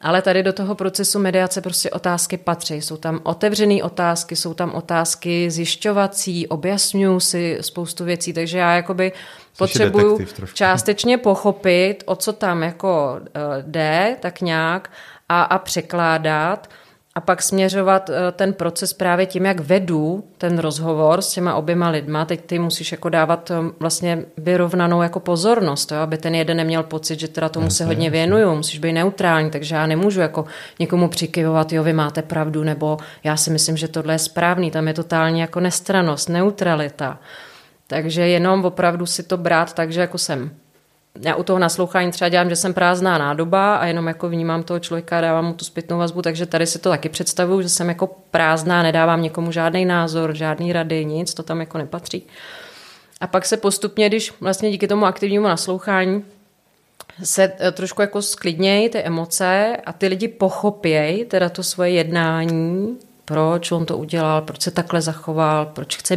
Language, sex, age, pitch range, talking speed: Czech, female, 30-49, 160-185 Hz, 170 wpm